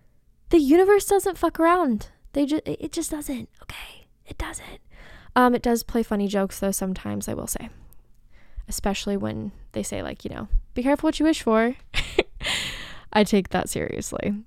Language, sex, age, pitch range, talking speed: English, female, 10-29, 185-235 Hz, 170 wpm